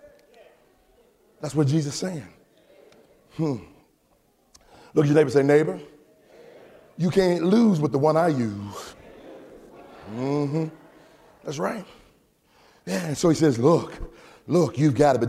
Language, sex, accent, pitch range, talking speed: English, male, American, 125-180 Hz, 135 wpm